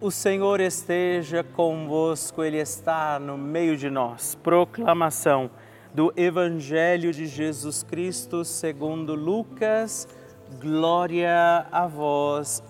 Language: Portuguese